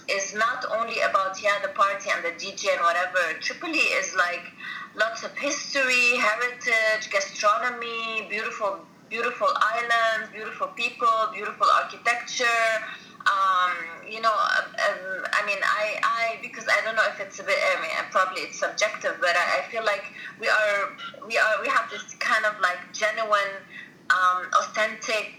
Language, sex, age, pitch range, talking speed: English, female, 20-39, 195-285 Hz, 155 wpm